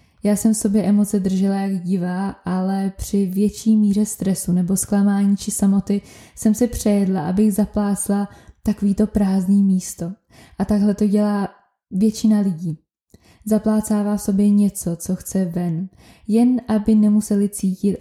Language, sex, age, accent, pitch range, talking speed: Czech, female, 20-39, native, 185-210 Hz, 140 wpm